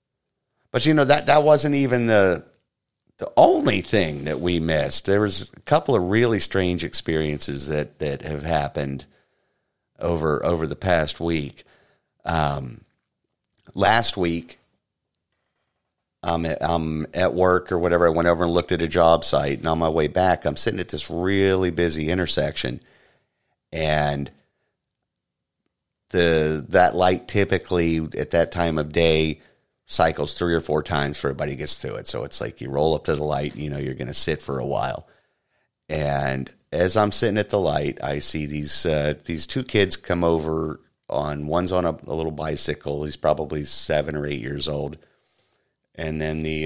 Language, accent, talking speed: English, American, 170 wpm